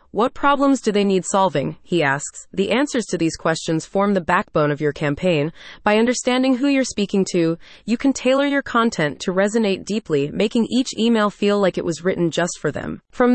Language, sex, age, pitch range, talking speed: English, female, 20-39, 170-230 Hz, 200 wpm